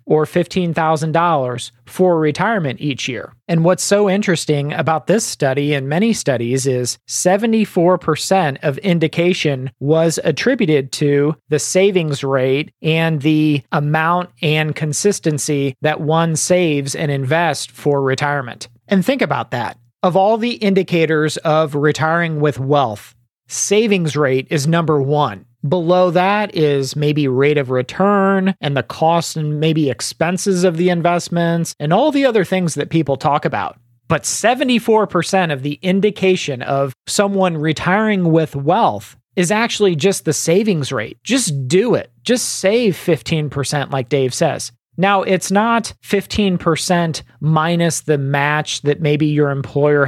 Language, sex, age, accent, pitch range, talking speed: English, male, 40-59, American, 145-185 Hz, 140 wpm